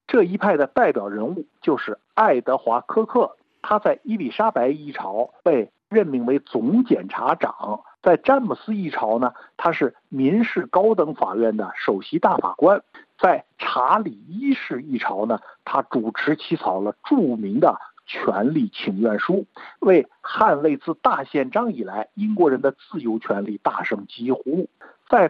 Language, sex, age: Chinese, male, 50-69